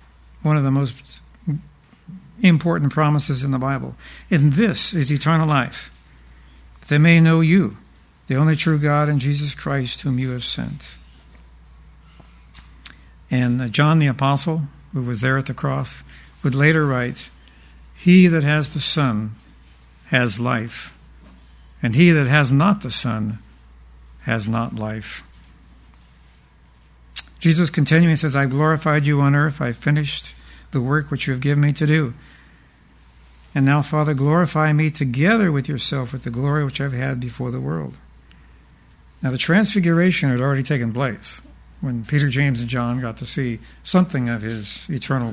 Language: English